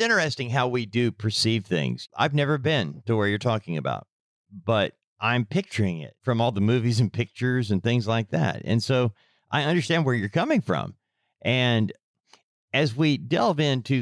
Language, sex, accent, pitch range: English, male, American, 110-145 Hz